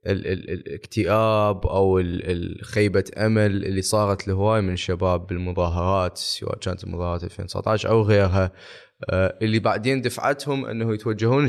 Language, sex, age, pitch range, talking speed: Arabic, male, 20-39, 95-115 Hz, 125 wpm